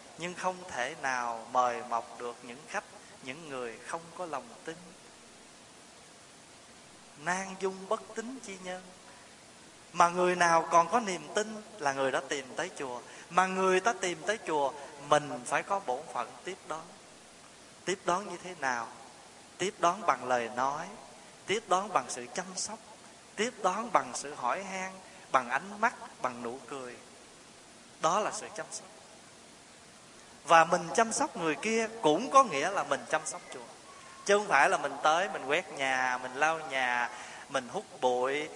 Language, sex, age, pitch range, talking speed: Vietnamese, male, 20-39, 140-195 Hz, 170 wpm